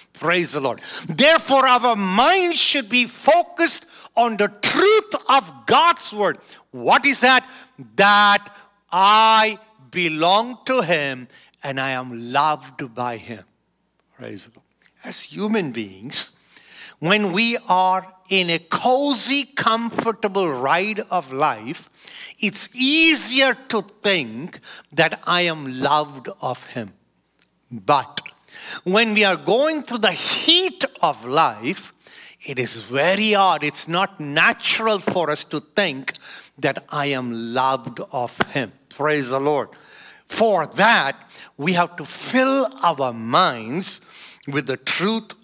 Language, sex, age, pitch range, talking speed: English, male, 50-69, 140-225 Hz, 125 wpm